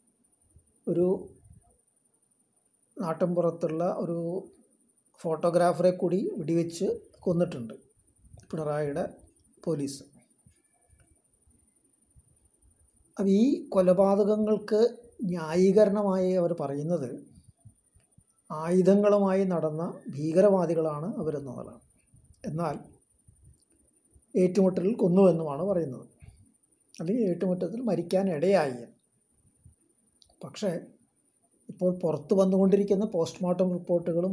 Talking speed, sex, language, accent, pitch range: 60 wpm, male, Malayalam, native, 165-200 Hz